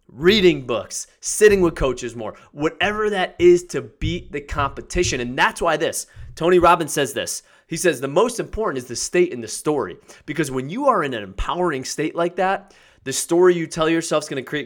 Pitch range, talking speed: 130-175 Hz, 200 wpm